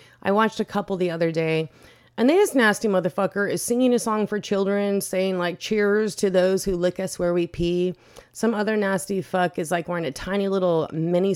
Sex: female